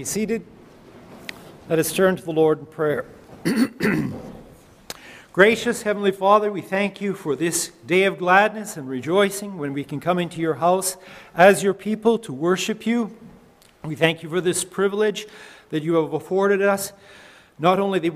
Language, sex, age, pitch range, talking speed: English, male, 50-69, 160-195 Hz, 160 wpm